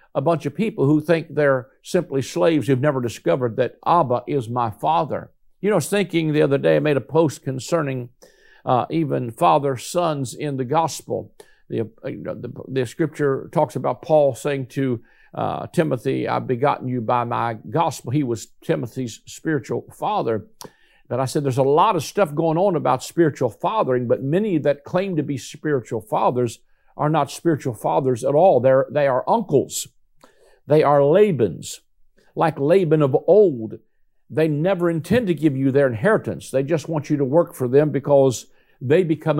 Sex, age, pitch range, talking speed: male, 50-69, 135-170 Hz, 180 wpm